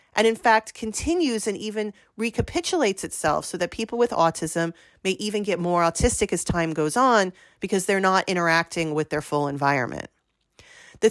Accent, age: American, 40-59